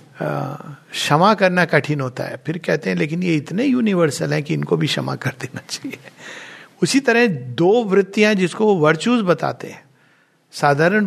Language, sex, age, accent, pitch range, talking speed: Hindi, male, 60-79, native, 135-180 Hz, 165 wpm